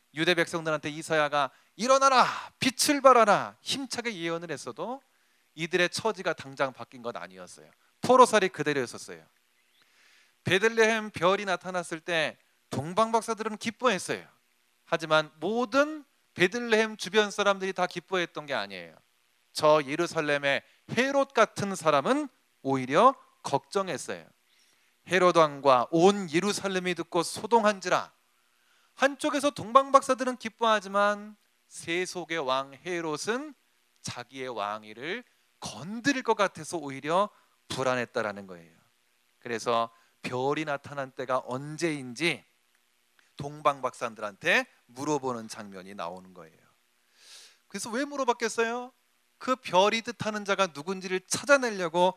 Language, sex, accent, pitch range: Korean, male, native, 140-225 Hz